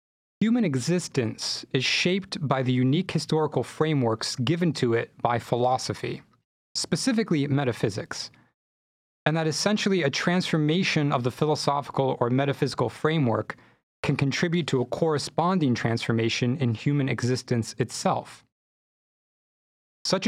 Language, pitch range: English, 120-160 Hz